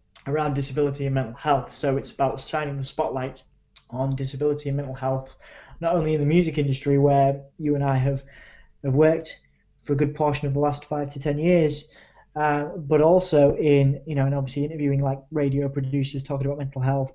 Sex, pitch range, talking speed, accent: male, 140-155 Hz, 195 wpm, British